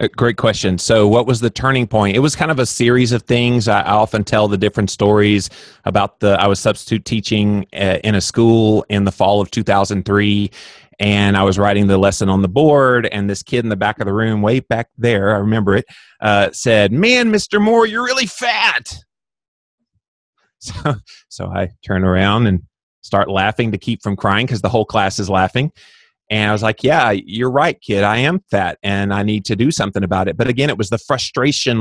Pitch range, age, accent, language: 100-120 Hz, 30-49, American, English